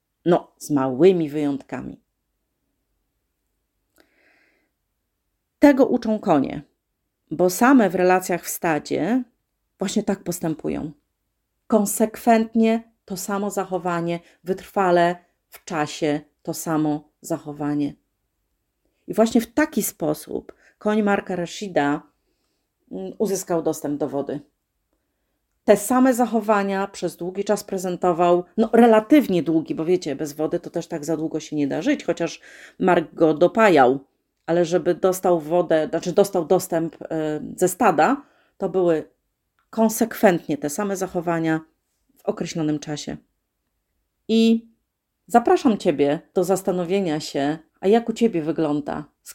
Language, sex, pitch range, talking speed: Polish, female, 160-210 Hz, 115 wpm